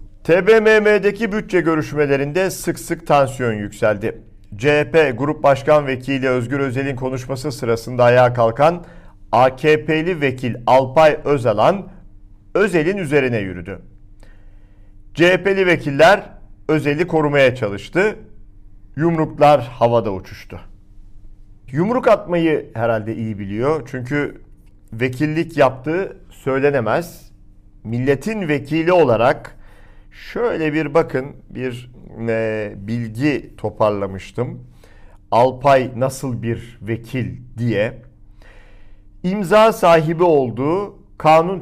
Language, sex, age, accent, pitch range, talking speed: Turkish, male, 50-69, native, 105-155 Hz, 85 wpm